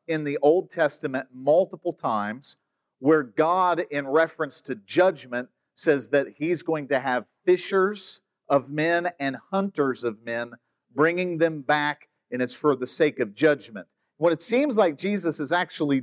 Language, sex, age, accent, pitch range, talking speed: English, male, 50-69, American, 140-180 Hz, 155 wpm